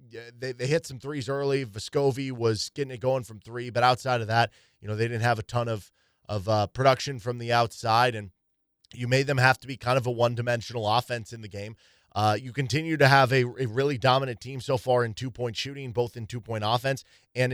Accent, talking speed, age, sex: American, 230 wpm, 20-39, male